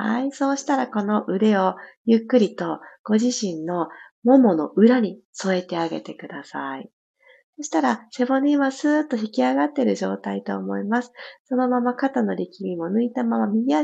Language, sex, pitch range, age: Japanese, female, 190-280 Hz, 40-59